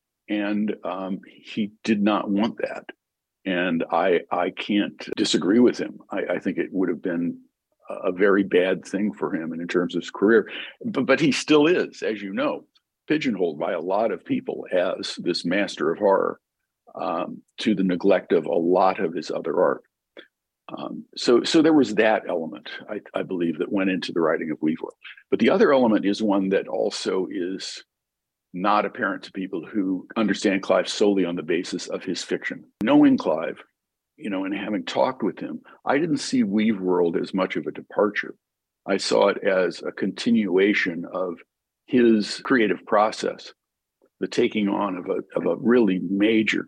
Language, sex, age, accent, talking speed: Swedish, male, 50-69, American, 180 wpm